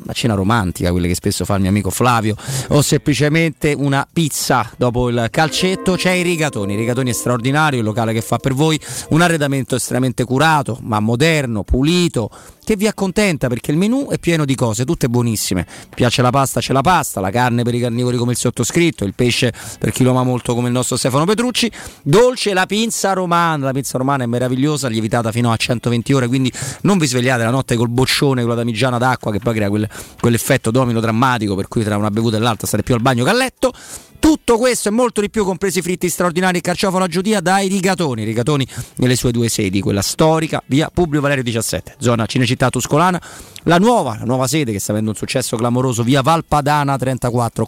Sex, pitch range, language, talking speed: male, 115-160 Hz, Italian, 210 wpm